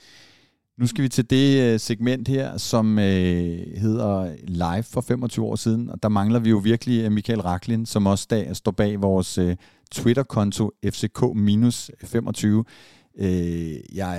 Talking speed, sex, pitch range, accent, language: 125 wpm, male, 95-115 Hz, native, Danish